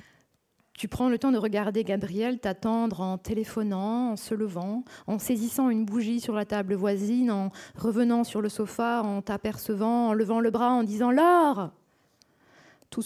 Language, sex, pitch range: French, female, 195-235 Hz